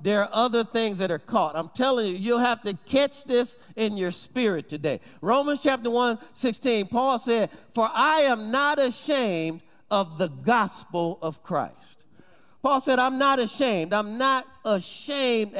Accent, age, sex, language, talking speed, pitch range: American, 40-59, male, English, 165 wpm, 200-270 Hz